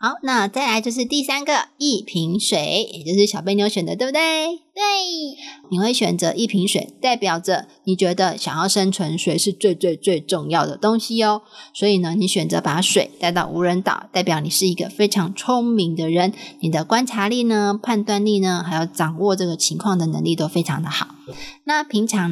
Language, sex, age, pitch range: Chinese, female, 20-39, 170-225 Hz